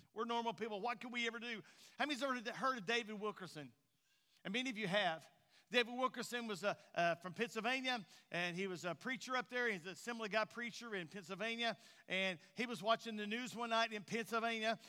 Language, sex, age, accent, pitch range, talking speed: English, male, 50-69, American, 190-250 Hz, 220 wpm